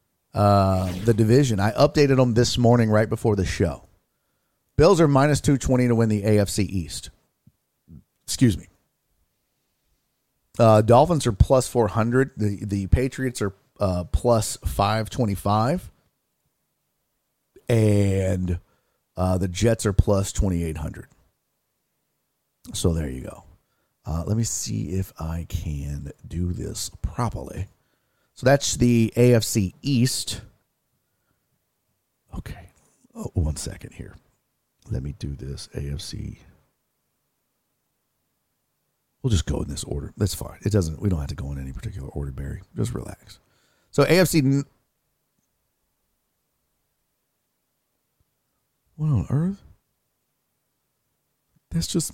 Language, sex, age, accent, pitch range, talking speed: English, male, 40-59, American, 90-125 Hz, 120 wpm